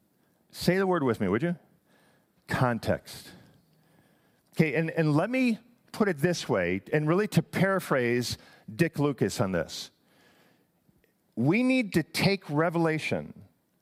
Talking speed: 130 wpm